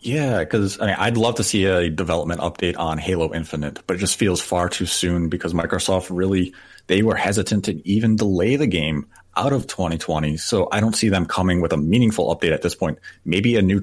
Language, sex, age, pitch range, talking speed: English, male, 30-49, 85-110 Hz, 215 wpm